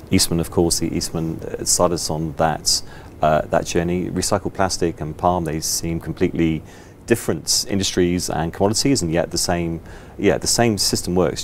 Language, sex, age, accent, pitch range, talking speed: Dutch, male, 30-49, British, 80-95 Hz, 165 wpm